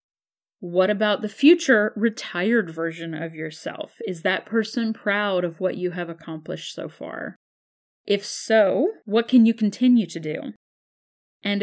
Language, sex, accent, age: English, female, American, 30-49